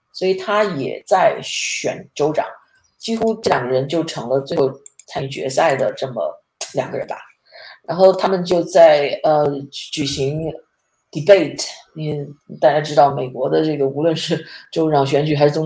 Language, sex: Chinese, female